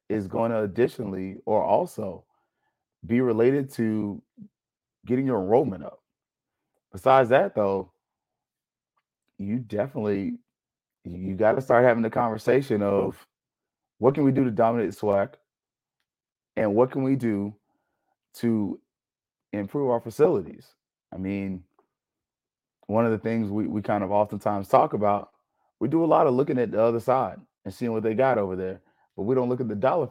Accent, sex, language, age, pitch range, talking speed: American, male, English, 30-49, 100-130 Hz, 155 wpm